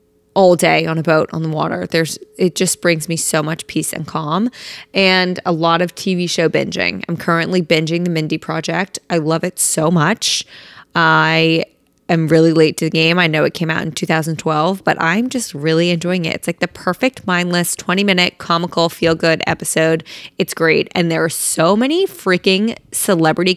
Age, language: 20-39, English